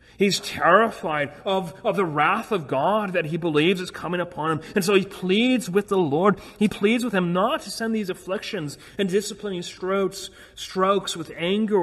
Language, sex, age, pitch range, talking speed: English, male, 30-49, 125-170 Hz, 185 wpm